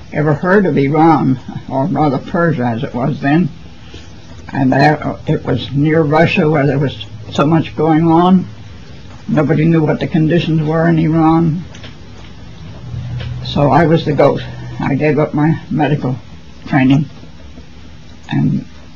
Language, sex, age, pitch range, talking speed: Persian, female, 60-79, 95-155 Hz, 140 wpm